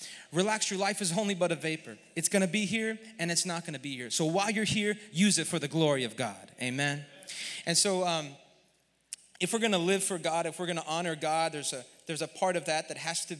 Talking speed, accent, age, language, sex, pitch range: 260 wpm, American, 30-49, English, male, 155-195 Hz